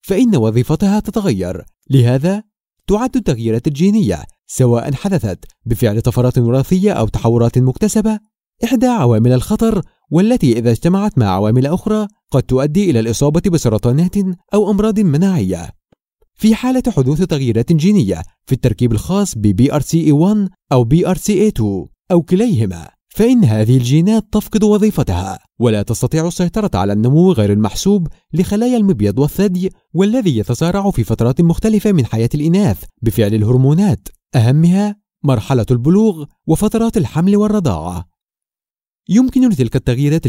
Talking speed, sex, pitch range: 120 wpm, male, 120-200 Hz